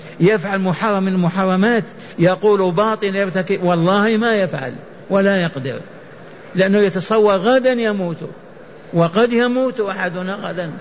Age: 60-79